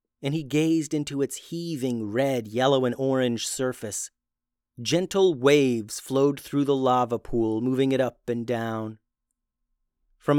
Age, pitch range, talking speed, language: 30-49, 120-145 Hz, 140 wpm, English